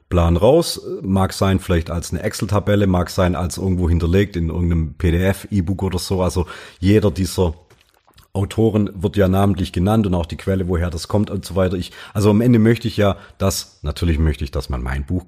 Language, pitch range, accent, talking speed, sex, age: German, 90-105 Hz, German, 205 wpm, male, 40-59